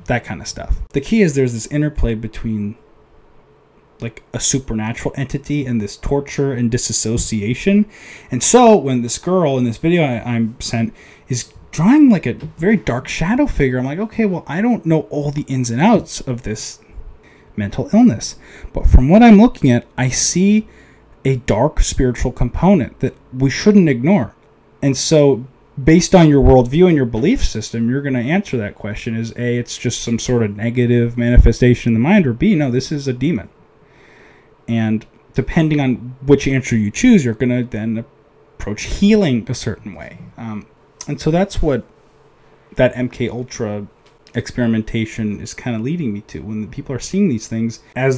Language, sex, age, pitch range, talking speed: English, male, 20-39, 115-145 Hz, 175 wpm